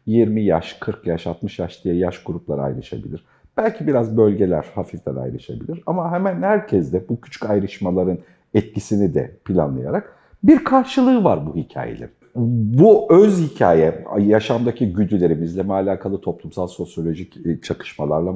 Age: 50-69